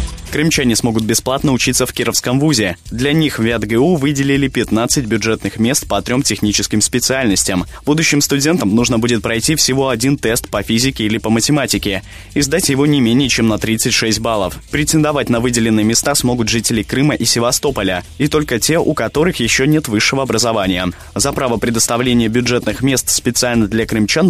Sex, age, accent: male, 20-39, native